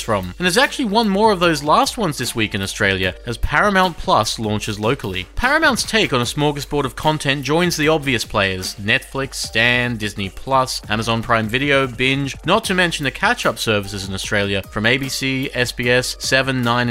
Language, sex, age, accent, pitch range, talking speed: English, male, 30-49, Australian, 115-170 Hz, 180 wpm